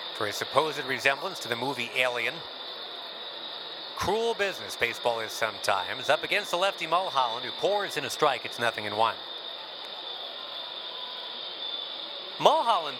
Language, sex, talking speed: English, male, 130 wpm